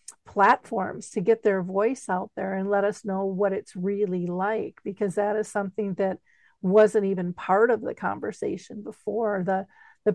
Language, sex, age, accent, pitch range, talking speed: English, female, 50-69, American, 185-205 Hz, 170 wpm